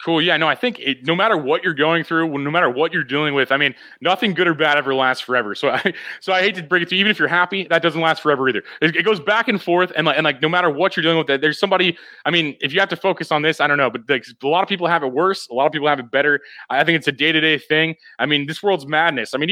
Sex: male